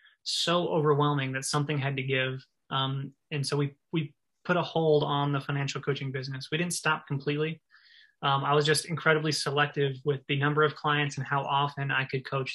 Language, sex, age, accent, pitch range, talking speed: English, male, 20-39, American, 140-155 Hz, 195 wpm